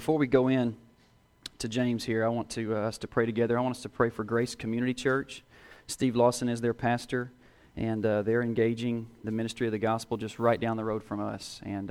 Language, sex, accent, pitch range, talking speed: English, male, American, 105-120 Hz, 225 wpm